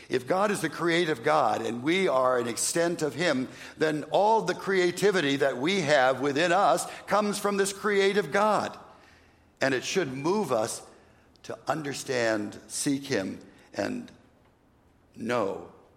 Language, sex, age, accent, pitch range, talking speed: English, male, 60-79, American, 120-170 Hz, 145 wpm